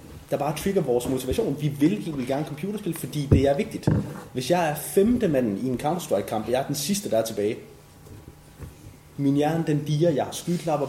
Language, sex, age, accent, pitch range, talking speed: Danish, male, 30-49, native, 125-160 Hz, 205 wpm